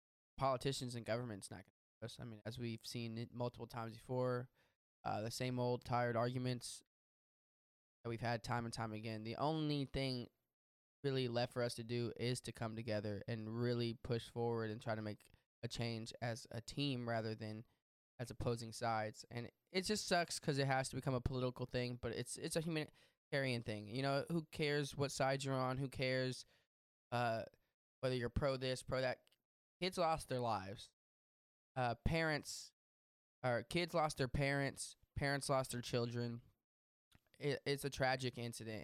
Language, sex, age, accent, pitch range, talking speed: English, male, 10-29, American, 115-135 Hz, 175 wpm